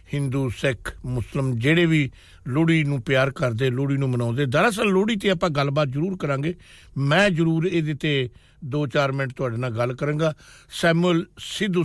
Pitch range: 110-145 Hz